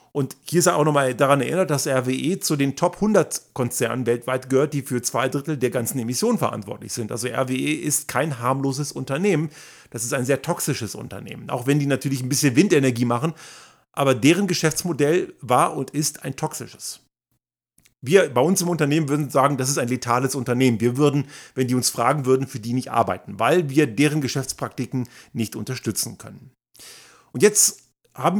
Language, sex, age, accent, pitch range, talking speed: German, male, 40-59, German, 125-160 Hz, 185 wpm